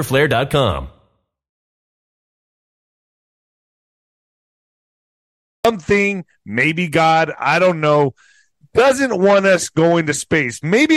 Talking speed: 75 wpm